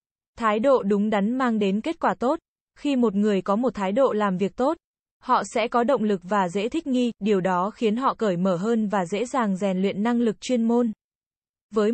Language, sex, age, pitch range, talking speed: Vietnamese, female, 20-39, 200-245 Hz, 225 wpm